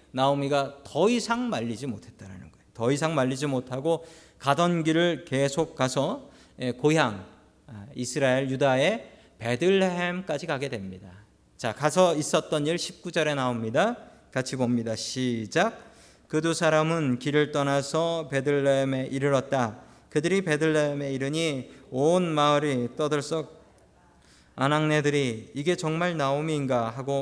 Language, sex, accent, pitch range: Korean, male, native, 125-165 Hz